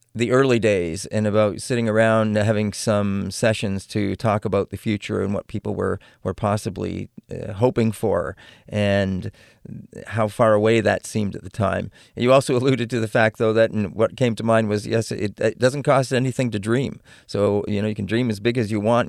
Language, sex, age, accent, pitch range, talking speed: English, male, 40-59, American, 105-125 Hz, 205 wpm